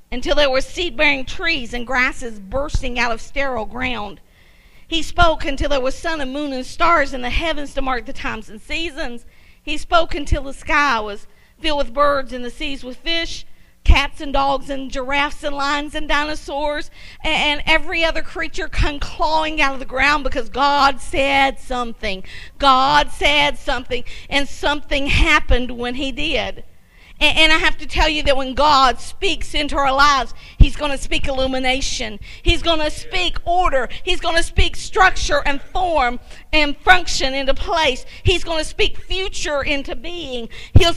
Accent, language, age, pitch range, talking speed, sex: American, English, 50-69, 265-315 Hz, 175 wpm, female